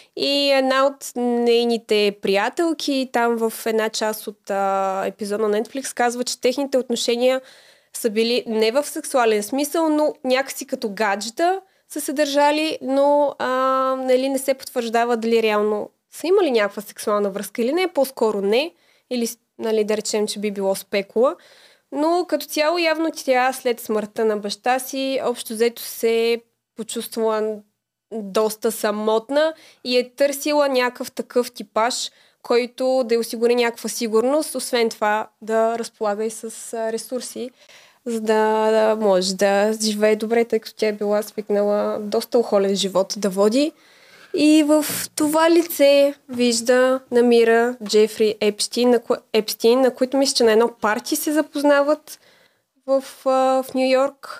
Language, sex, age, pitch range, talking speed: Bulgarian, female, 20-39, 220-275 Hz, 140 wpm